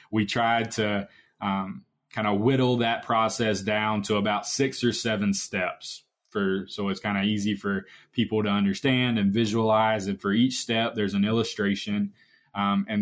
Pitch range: 100-120 Hz